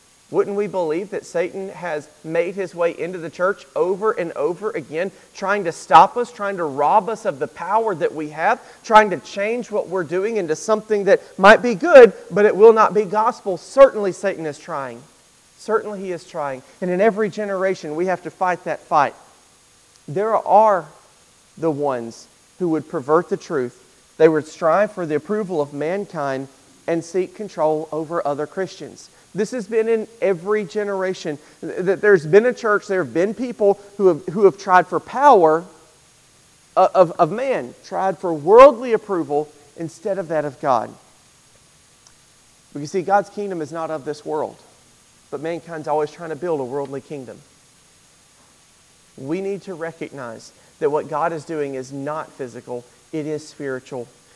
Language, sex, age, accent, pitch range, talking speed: English, male, 40-59, American, 155-205 Hz, 170 wpm